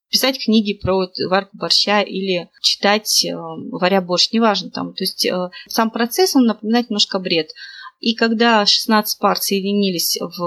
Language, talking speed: Russian, 155 wpm